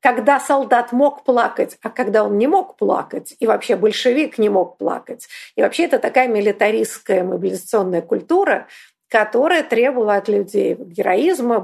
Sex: female